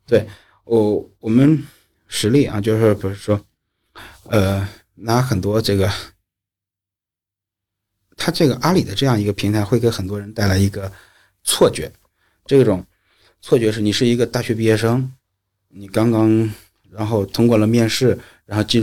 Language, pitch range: Chinese, 95-115 Hz